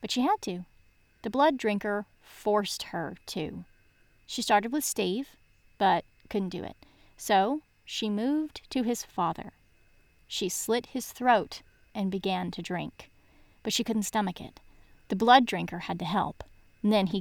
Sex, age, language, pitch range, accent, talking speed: female, 30-49, English, 190-270 Hz, American, 160 wpm